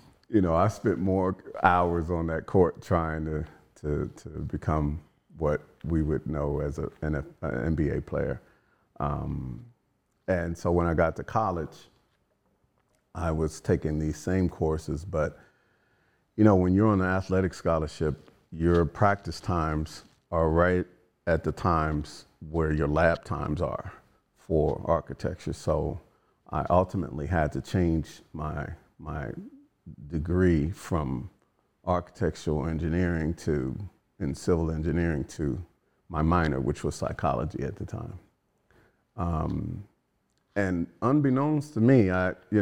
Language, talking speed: English, 130 wpm